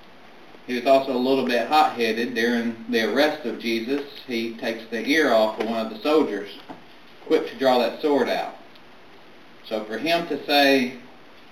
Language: English